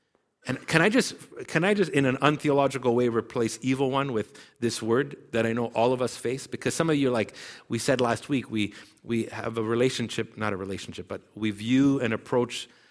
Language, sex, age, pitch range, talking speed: English, male, 50-69, 110-150 Hz, 215 wpm